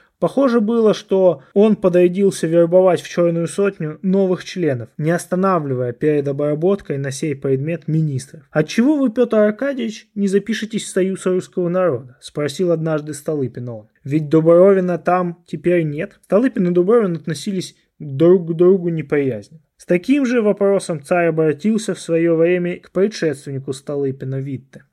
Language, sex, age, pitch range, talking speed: Russian, male, 20-39, 150-195 Hz, 140 wpm